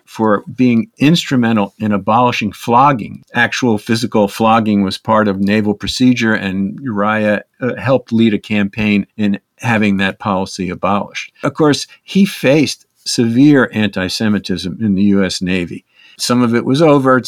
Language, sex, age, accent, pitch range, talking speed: English, male, 50-69, American, 105-125 Hz, 140 wpm